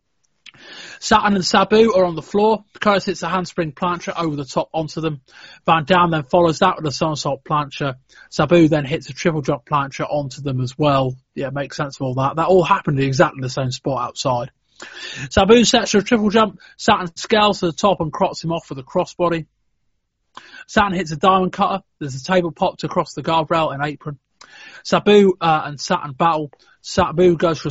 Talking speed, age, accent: 200 wpm, 30-49, British